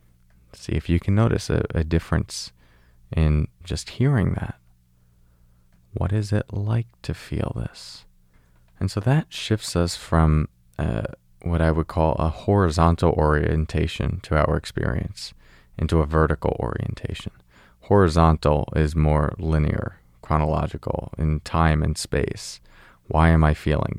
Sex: male